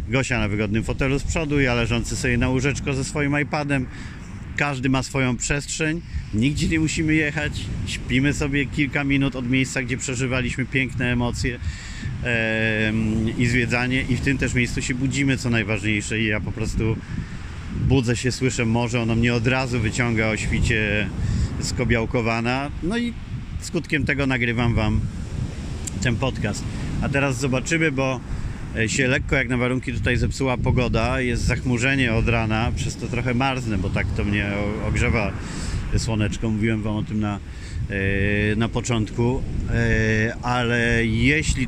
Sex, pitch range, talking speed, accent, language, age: male, 110-130 Hz, 145 wpm, native, Polish, 40-59